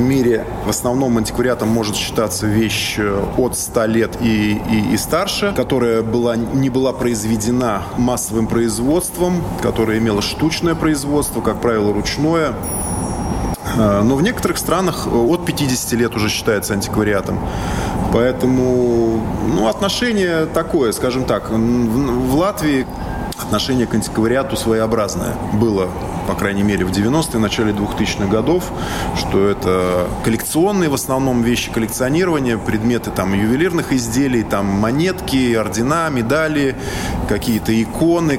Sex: male